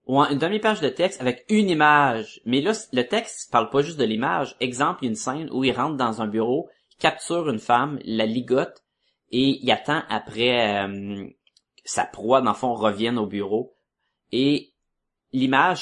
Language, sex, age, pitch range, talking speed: French, male, 30-49, 110-155 Hz, 190 wpm